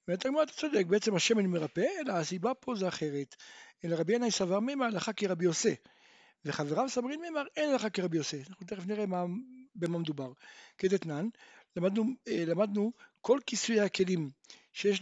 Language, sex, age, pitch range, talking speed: Hebrew, male, 60-79, 180-245 Hz, 150 wpm